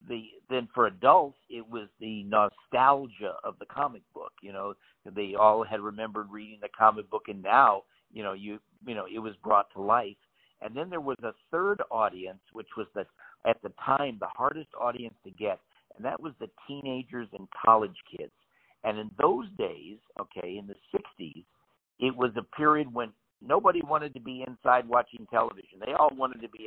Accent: American